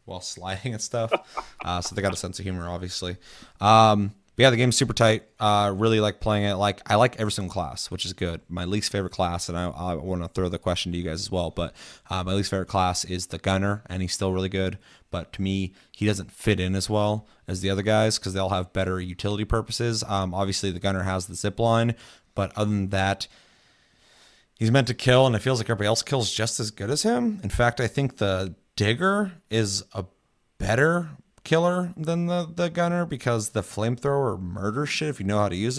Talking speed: 235 wpm